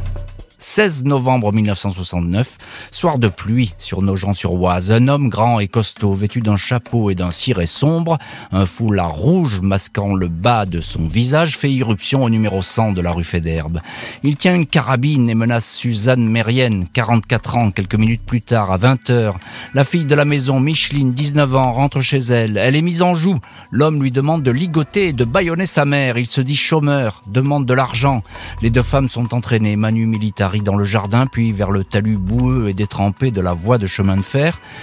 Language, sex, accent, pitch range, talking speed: French, male, French, 95-135 Hz, 190 wpm